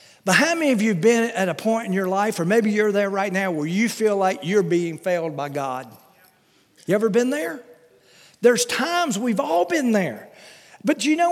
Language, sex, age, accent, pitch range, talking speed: English, male, 50-69, American, 190-280 Hz, 225 wpm